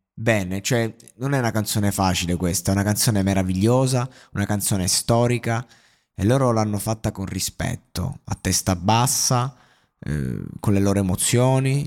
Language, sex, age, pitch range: Italian, male, 20-39, 95-120 Hz